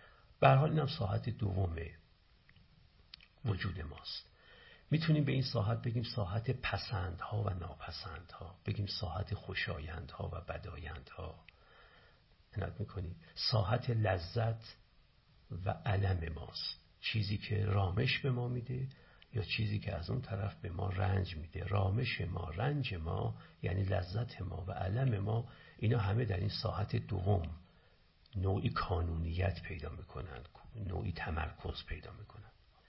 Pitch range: 90-120 Hz